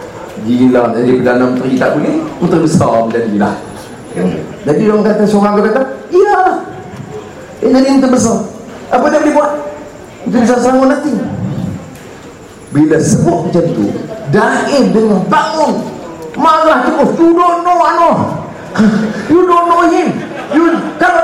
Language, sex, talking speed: English, male, 125 wpm